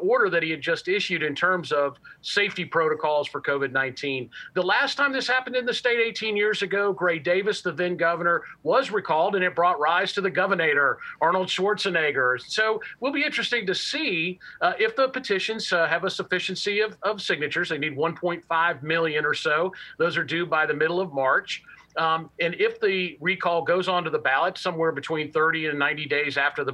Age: 40-59